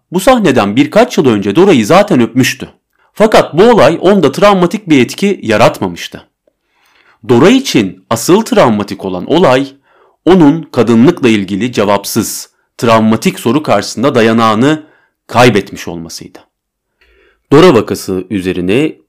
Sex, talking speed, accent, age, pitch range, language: male, 110 wpm, native, 40-59, 95-130 Hz, Turkish